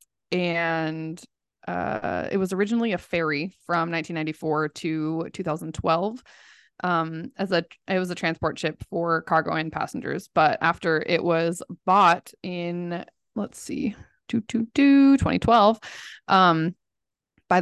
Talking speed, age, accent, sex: 130 wpm, 20-39, American, female